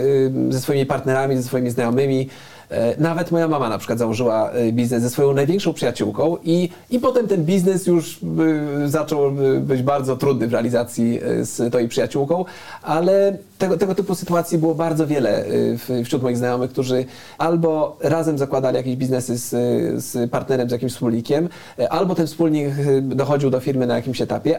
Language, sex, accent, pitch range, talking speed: Polish, male, native, 130-165 Hz, 155 wpm